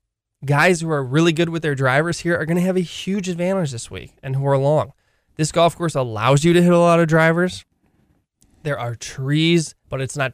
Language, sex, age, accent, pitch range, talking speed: English, male, 20-39, American, 120-155 Hz, 225 wpm